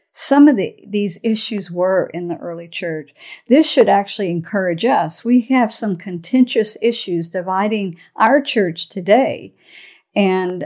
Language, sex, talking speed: English, female, 135 wpm